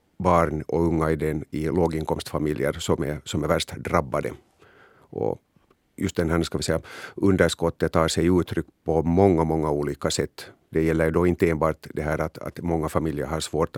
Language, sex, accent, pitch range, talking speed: Swedish, male, Finnish, 80-90 Hz, 185 wpm